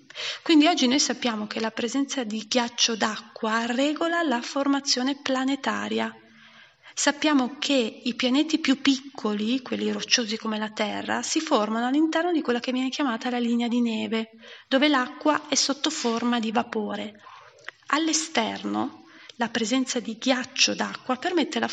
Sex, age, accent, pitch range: female, 30-49, native, 235-285 Hz